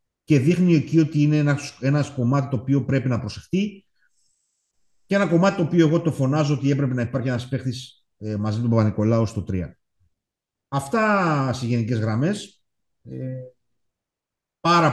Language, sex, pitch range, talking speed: Greek, male, 110-140 Hz, 150 wpm